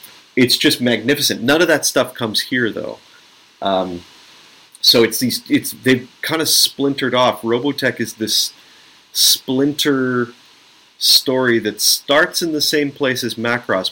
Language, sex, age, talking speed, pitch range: English, male, 30-49, 140 wpm, 105-130 Hz